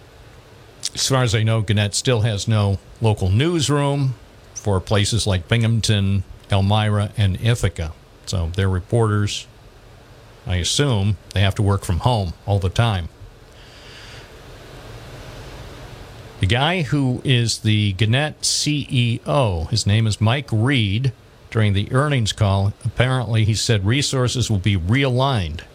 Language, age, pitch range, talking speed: English, 50-69, 105-120 Hz, 130 wpm